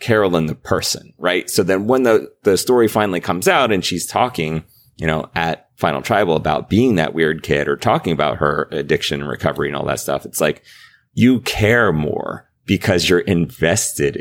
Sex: male